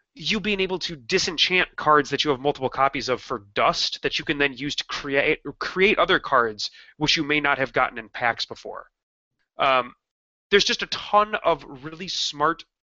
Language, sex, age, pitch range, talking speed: English, male, 30-49, 140-190 Hz, 195 wpm